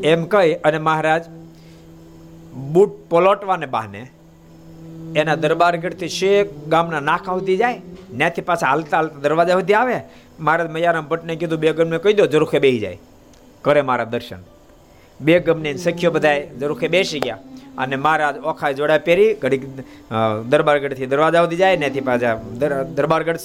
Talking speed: 135 wpm